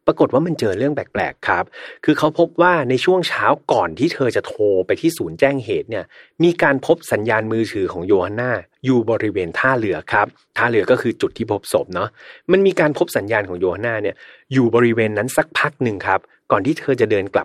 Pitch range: 110-175 Hz